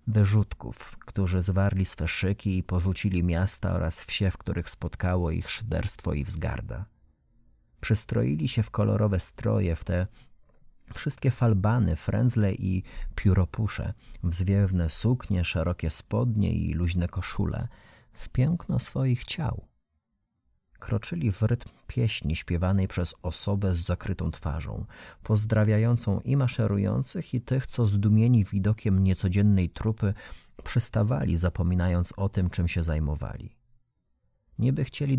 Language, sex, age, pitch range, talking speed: Polish, male, 30-49, 90-115 Hz, 120 wpm